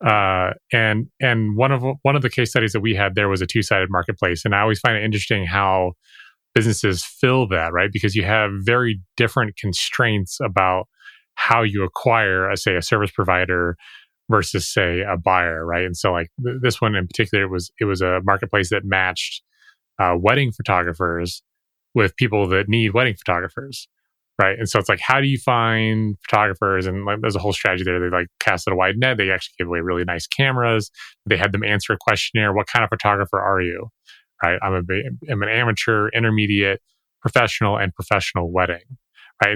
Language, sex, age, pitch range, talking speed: English, male, 30-49, 95-115 Hz, 195 wpm